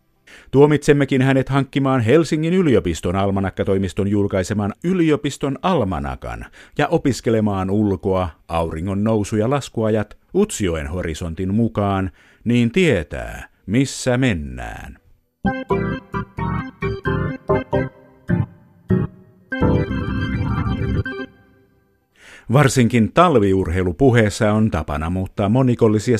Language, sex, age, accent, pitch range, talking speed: Finnish, male, 50-69, native, 90-125 Hz, 65 wpm